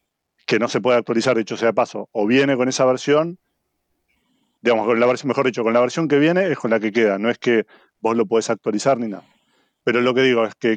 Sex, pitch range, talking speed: male, 110-130 Hz, 245 wpm